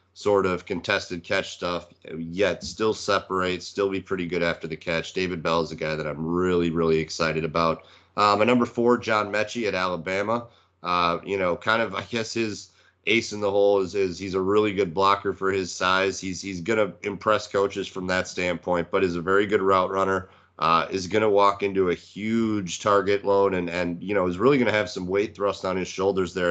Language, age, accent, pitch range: English, 30-49, American, 90-100 Hz